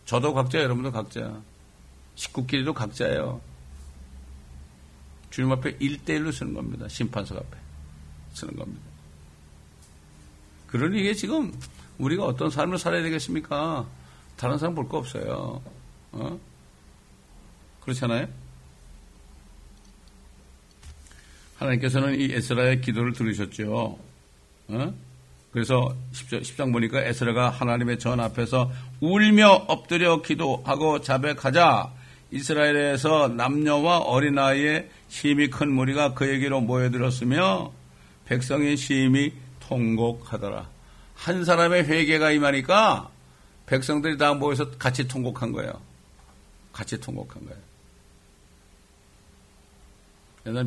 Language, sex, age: Korean, male, 60-79